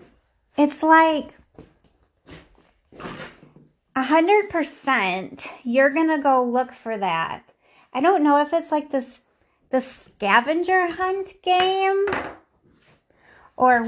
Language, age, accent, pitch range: English, 30-49, American, 235-300 Hz